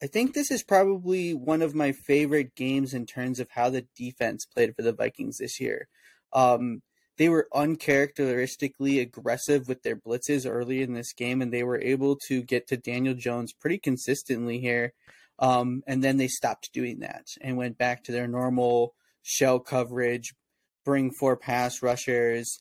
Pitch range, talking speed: 125-145 Hz, 175 wpm